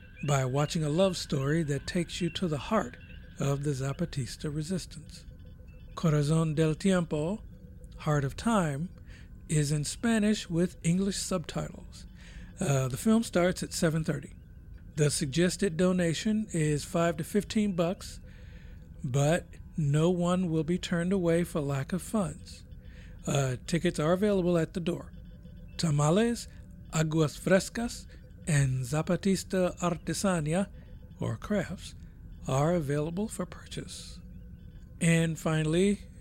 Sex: male